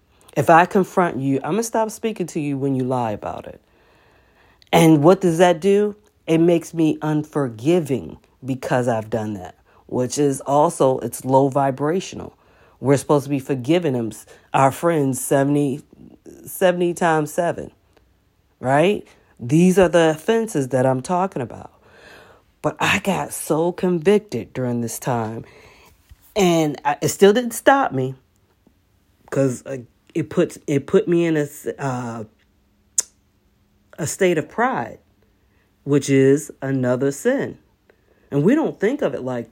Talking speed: 140 wpm